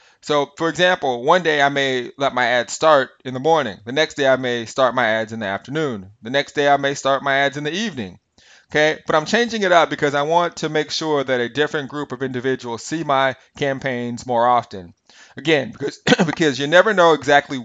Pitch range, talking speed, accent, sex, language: 120-145 Hz, 225 wpm, American, male, English